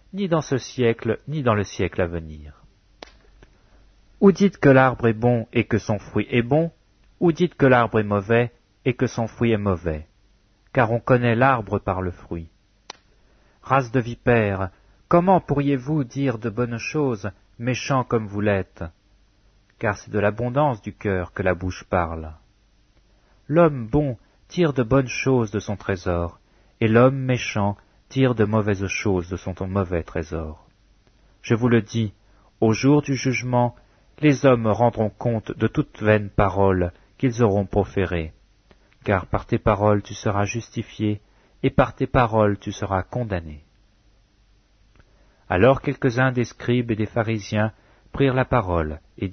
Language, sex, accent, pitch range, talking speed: French, male, French, 100-125 Hz, 155 wpm